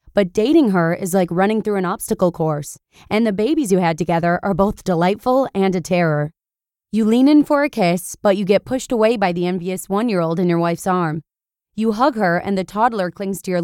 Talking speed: 220 wpm